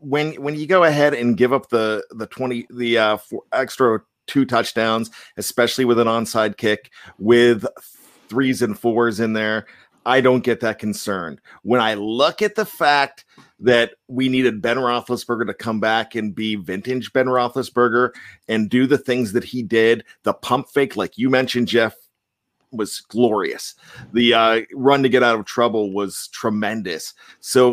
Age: 40-59